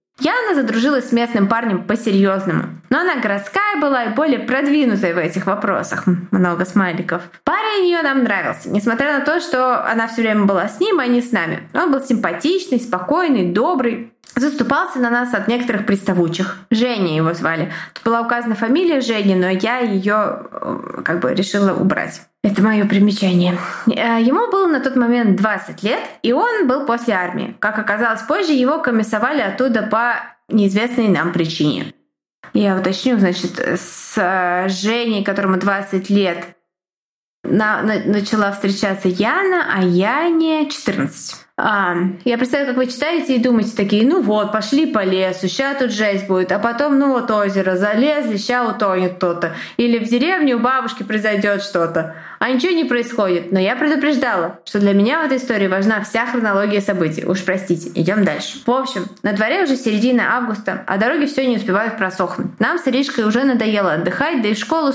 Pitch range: 195-255 Hz